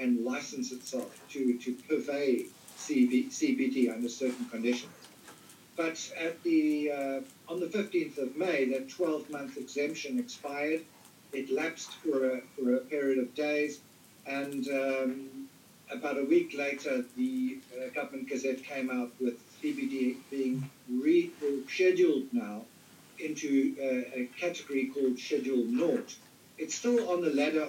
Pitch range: 130-170 Hz